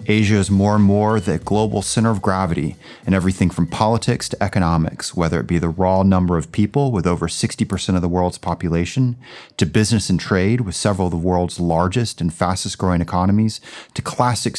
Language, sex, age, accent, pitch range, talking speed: English, male, 30-49, American, 90-110 Hz, 195 wpm